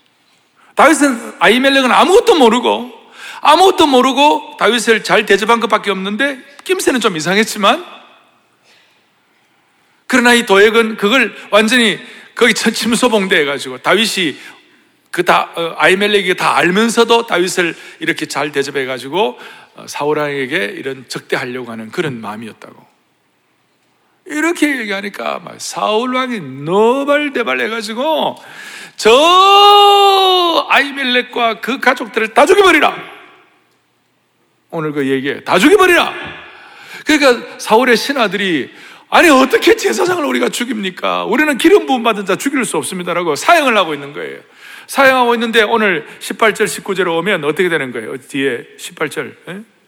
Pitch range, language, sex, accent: 195-290 Hz, Korean, male, native